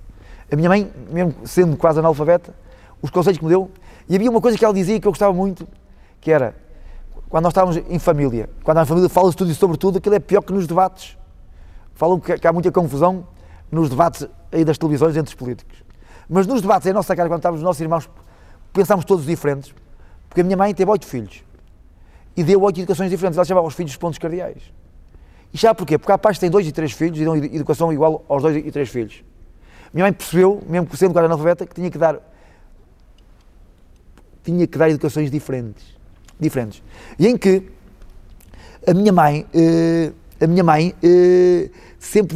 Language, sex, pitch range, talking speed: Portuguese, male, 120-180 Hz, 195 wpm